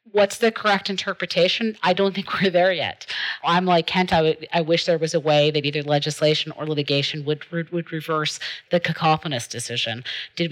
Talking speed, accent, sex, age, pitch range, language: 185 wpm, American, female, 40-59, 150-180 Hz, English